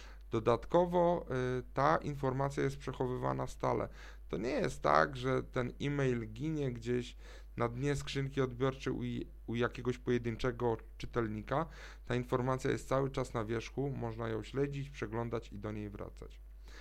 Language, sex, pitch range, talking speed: Polish, male, 115-140 Hz, 140 wpm